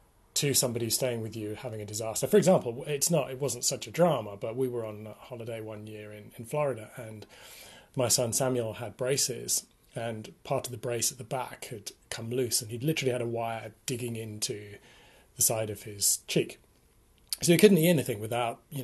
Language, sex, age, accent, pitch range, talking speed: English, male, 30-49, British, 115-145 Hz, 205 wpm